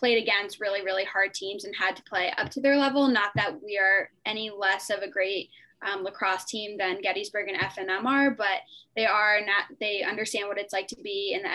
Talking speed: 225 wpm